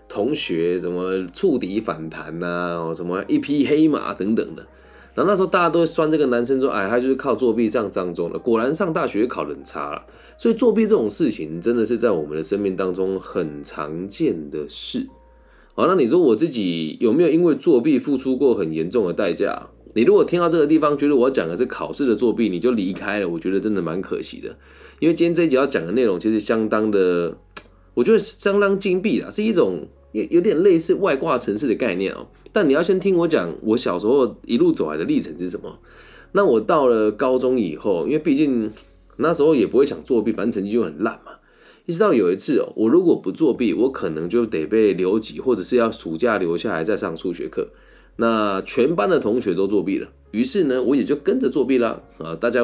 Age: 20-39